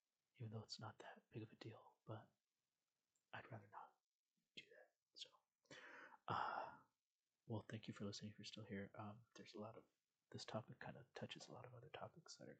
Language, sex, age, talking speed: English, male, 30-49, 205 wpm